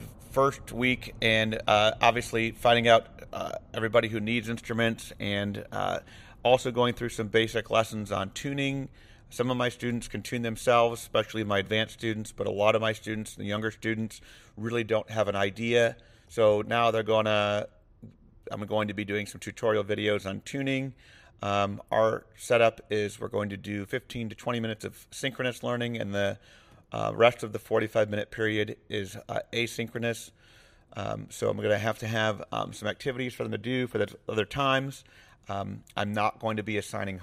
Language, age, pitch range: English, 40-59, 105-115 Hz